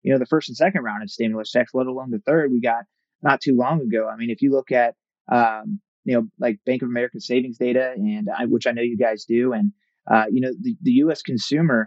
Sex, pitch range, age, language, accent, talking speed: male, 120-160 Hz, 30-49, English, American, 260 wpm